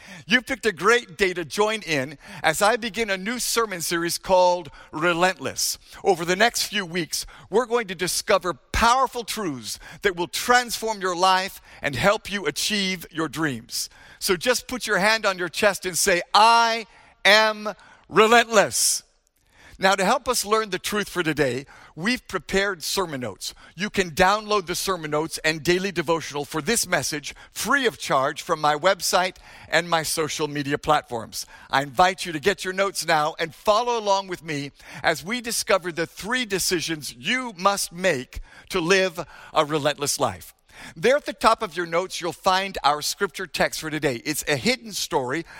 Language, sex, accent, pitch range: English, male, American, 160-210 Hz